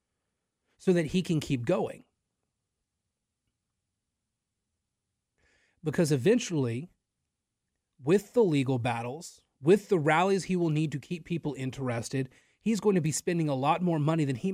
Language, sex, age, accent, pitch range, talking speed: English, male, 30-49, American, 130-175 Hz, 135 wpm